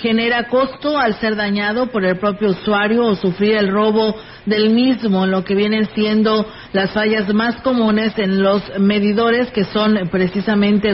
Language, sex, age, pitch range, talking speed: Spanish, female, 40-59, 205-230 Hz, 160 wpm